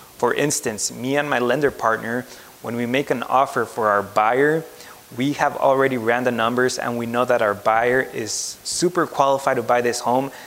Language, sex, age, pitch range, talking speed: English, male, 20-39, 120-140 Hz, 195 wpm